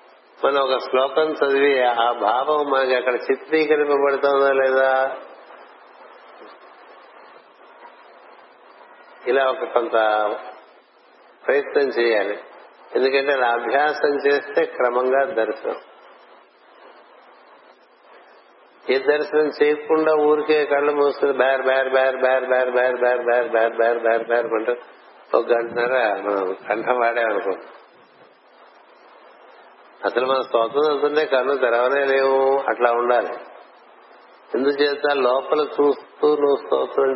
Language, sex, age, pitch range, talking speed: Telugu, male, 60-79, 125-145 Hz, 70 wpm